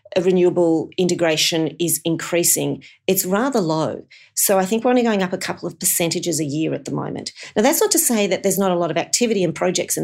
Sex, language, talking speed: female, English, 235 wpm